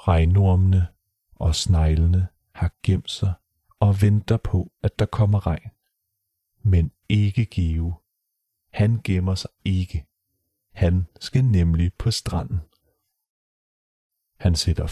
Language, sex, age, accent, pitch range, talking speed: Danish, male, 40-59, native, 90-105 Hz, 110 wpm